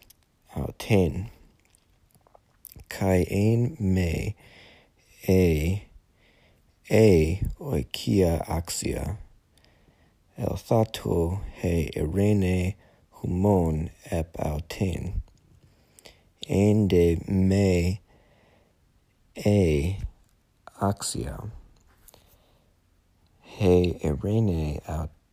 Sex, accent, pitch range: male, American, 85-100 Hz